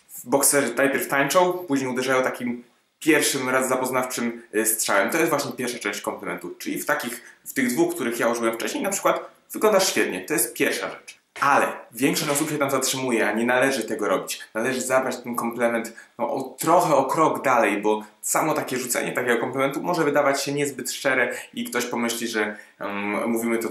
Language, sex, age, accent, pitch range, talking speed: Polish, male, 20-39, native, 110-140 Hz, 185 wpm